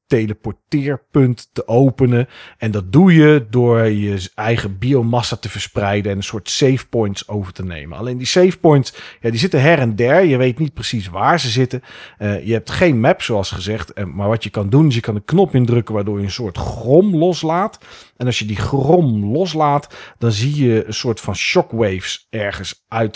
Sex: male